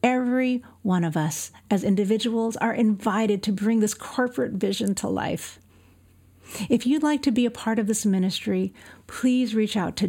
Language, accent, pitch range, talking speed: English, American, 150-220 Hz, 175 wpm